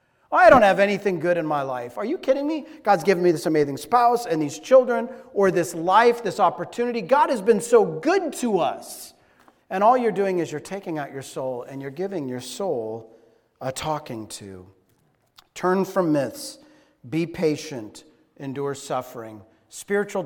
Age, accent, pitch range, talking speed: 40-59, American, 150-220 Hz, 175 wpm